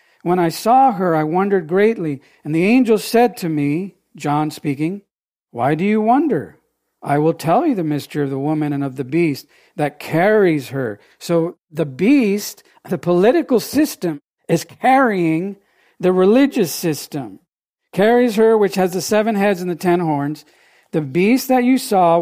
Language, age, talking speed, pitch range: English, 50-69, 165 wpm, 155-205 Hz